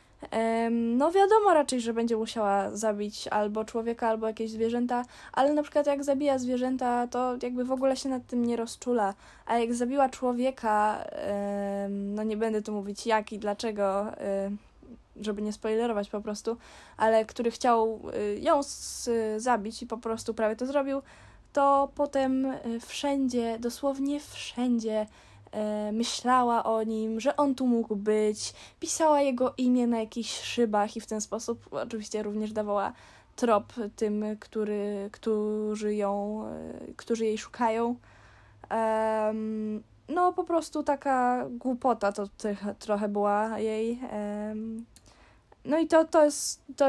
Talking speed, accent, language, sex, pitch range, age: 135 wpm, native, Polish, female, 210-250 Hz, 10-29